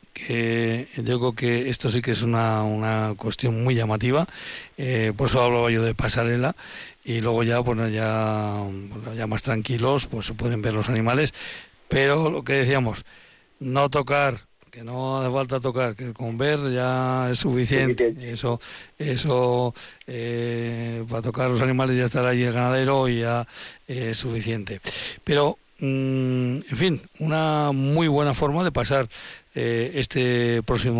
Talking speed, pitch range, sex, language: 160 wpm, 115-135 Hz, male, Spanish